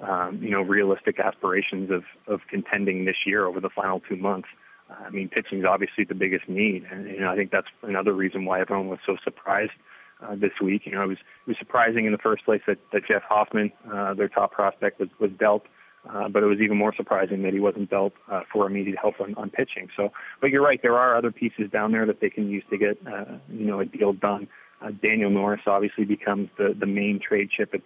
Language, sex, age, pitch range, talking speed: English, male, 20-39, 100-105 Hz, 245 wpm